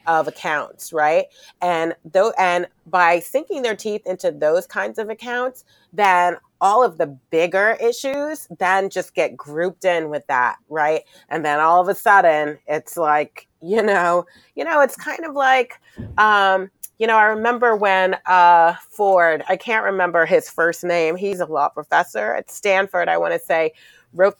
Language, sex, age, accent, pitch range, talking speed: English, female, 30-49, American, 165-215 Hz, 170 wpm